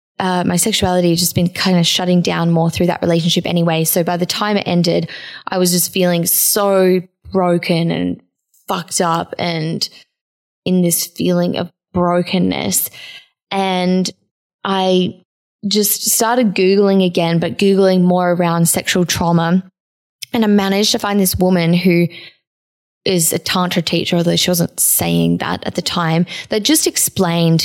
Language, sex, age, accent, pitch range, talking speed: English, female, 10-29, Australian, 170-195 Hz, 150 wpm